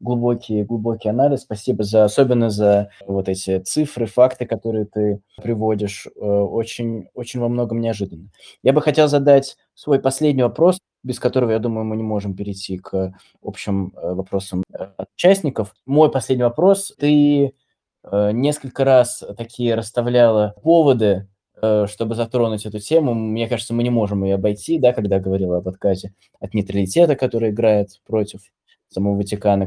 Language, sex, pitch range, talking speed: Russian, male, 100-120 Hz, 140 wpm